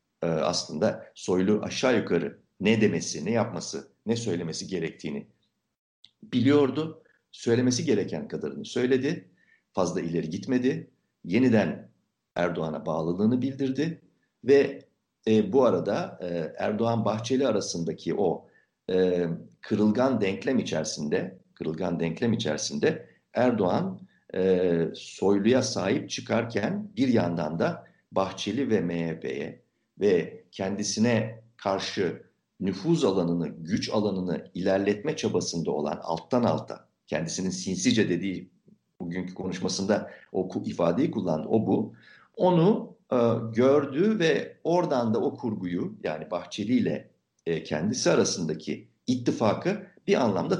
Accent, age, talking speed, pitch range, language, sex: native, 60-79, 100 wpm, 90-135 Hz, Turkish, male